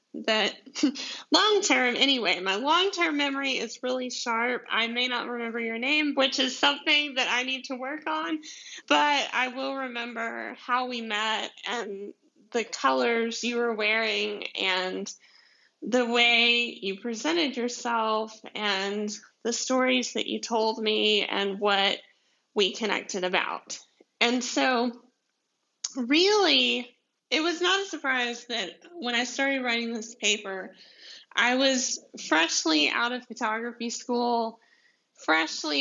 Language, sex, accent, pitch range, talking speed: English, female, American, 220-275 Hz, 135 wpm